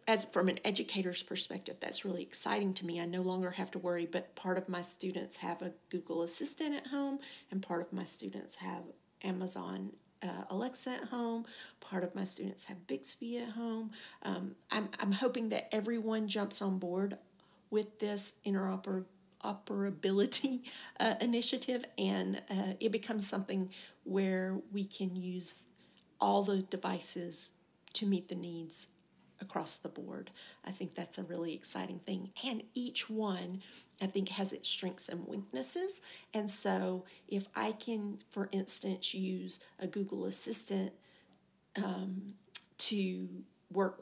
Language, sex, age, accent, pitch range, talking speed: English, female, 40-59, American, 180-210 Hz, 150 wpm